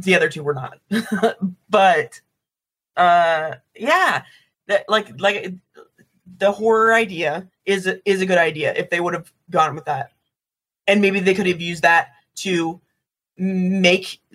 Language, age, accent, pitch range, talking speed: English, 20-39, American, 175-220 Hz, 140 wpm